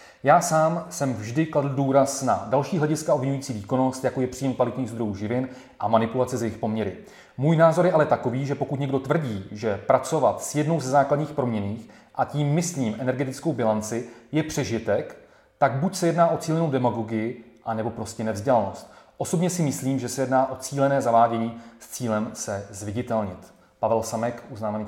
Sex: male